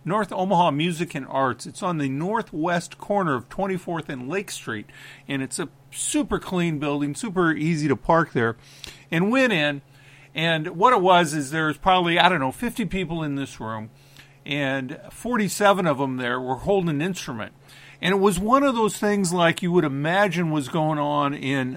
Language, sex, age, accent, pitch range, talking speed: English, male, 50-69, American, 140-185 Hz, 190 wpm